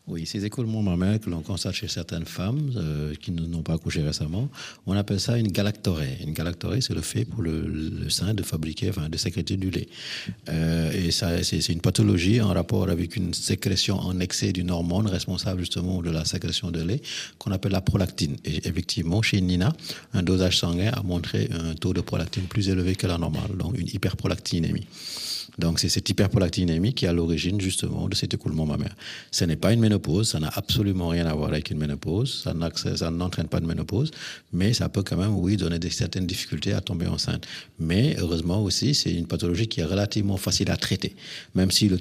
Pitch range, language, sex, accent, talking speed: 85-105 Hz, French, male, French, 205 wpm